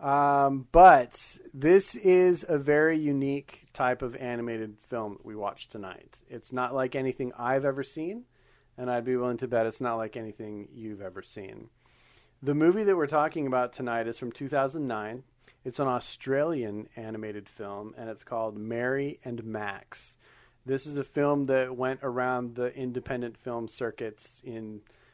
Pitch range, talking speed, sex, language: 110-130 Hz, 160 wpm, male, English